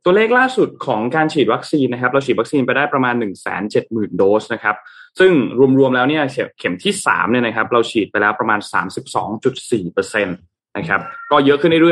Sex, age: male, 20-39